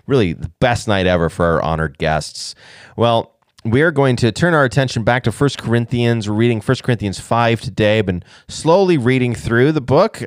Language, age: English, 30-49